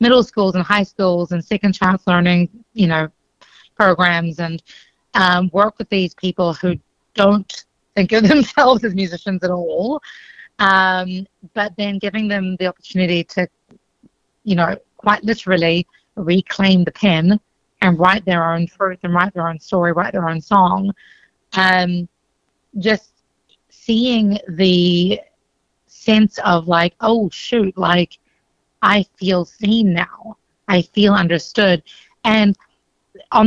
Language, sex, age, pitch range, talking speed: English, female, 30-49, 180-210 Hz, 135 wpm